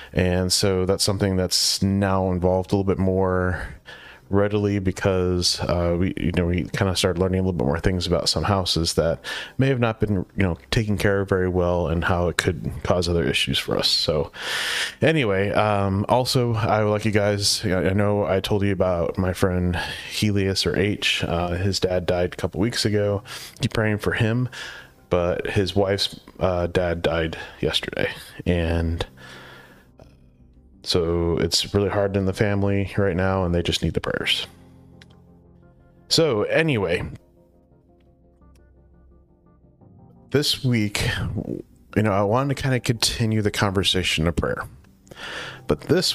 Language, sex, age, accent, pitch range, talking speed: English, male, 30-49, American, 85-105 Hz, 165 wpm